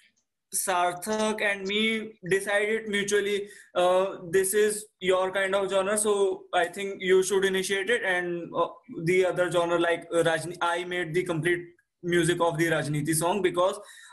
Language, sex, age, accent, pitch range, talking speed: English, male, 20-39, Indian, 160-200 Hz, 150 wpm